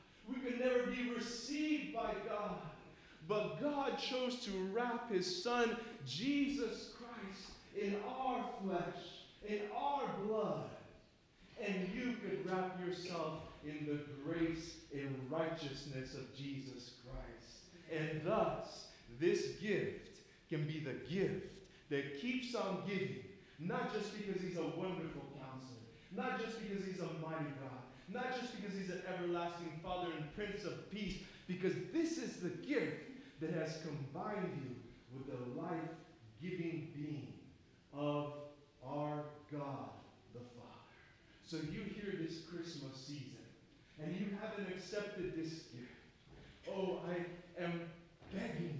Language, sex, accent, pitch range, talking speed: English, male, American, 145-205 Hz, 130 wpm